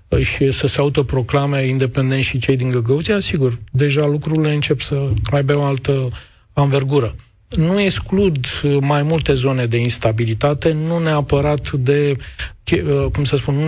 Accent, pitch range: native, 135-160 Hz